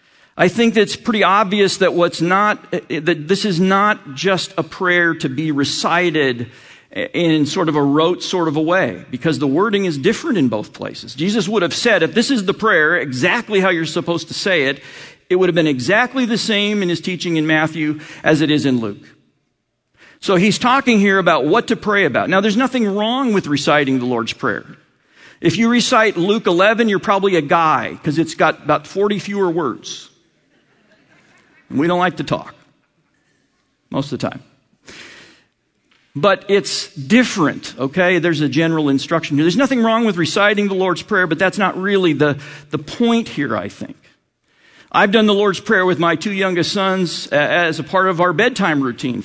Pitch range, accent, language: 150-200 Hz, American, English